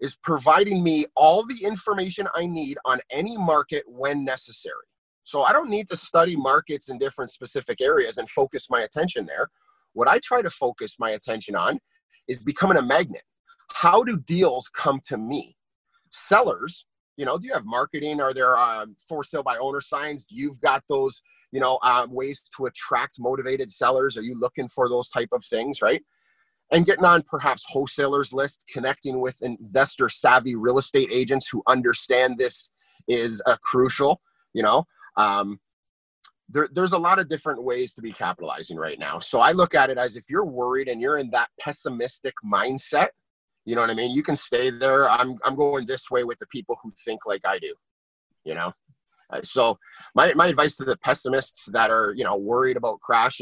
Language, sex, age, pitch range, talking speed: English, male, 30-49, 130-190 Hz, 190 wpm